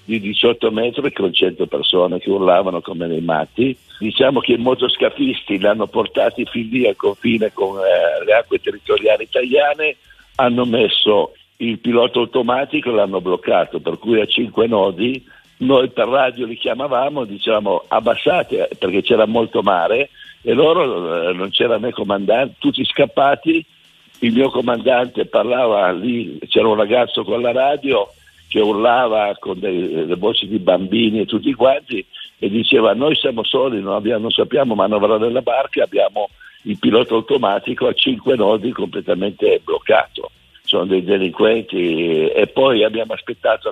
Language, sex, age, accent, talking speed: Italian, male, 60-79, native, 150 wpm